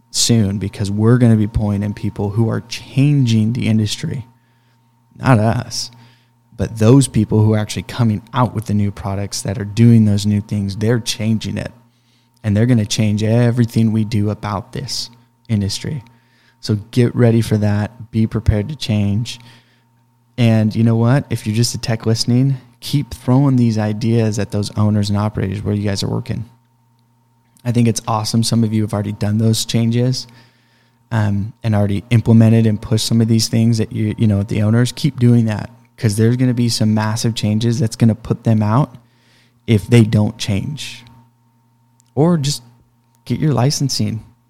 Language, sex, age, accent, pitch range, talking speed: English, male, 20-39, American, 110-120 Hz, 180 wpm